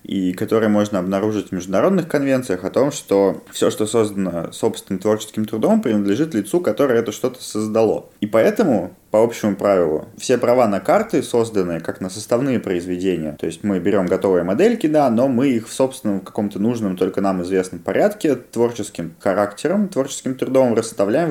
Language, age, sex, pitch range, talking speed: Russian, 20-39, male, 95-115 Hz, 170 wpm